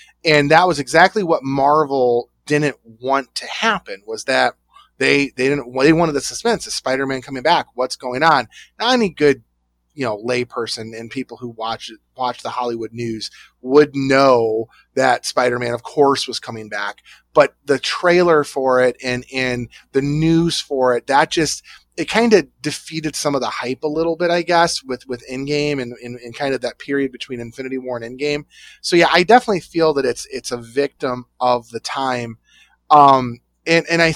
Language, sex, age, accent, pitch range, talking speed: English, male, 30-49, American, 125-155 Hz, 195 wpm